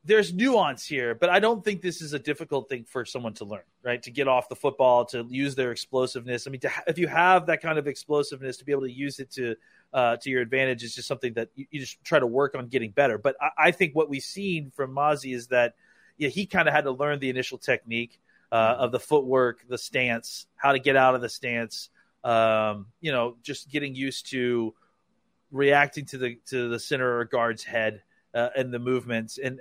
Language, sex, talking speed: English, male, 235 wpm